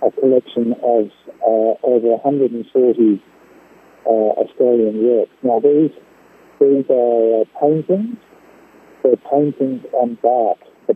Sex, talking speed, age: male, 115 wpm, 50-69